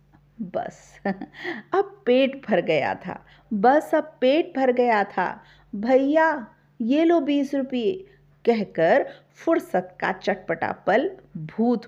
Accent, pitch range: native, 170-240 Hz